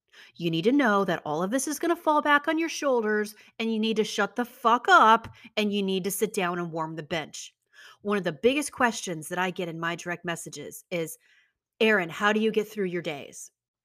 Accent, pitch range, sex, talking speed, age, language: American, 185-245 Hz, female, 240 wpm, 30-49, English